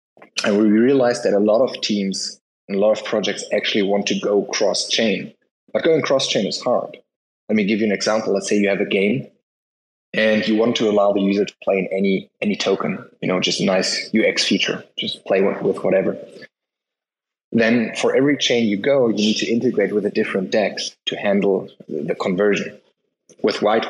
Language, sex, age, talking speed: English, male, 20-39, 200 wpm